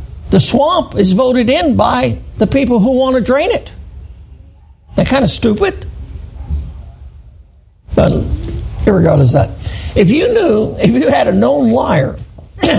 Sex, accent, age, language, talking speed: male, American, 60-79, English, 140 wpm